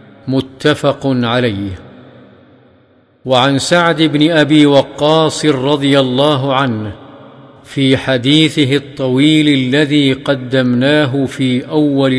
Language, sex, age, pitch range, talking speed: Arabic, male, 50-69, 130-155 Hz, 85 wpm